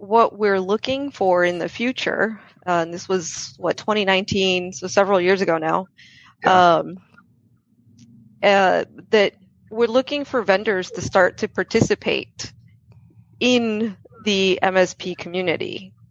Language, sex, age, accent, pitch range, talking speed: English, female, 30-49, American, 180-225 Hz, 125 wpm